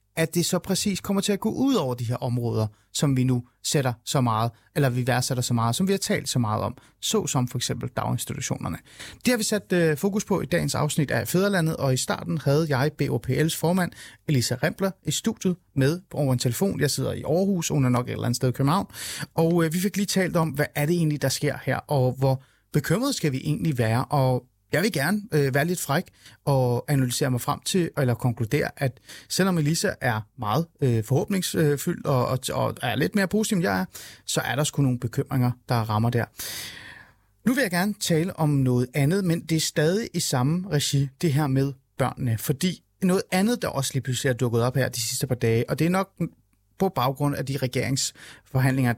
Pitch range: 125-170 Hz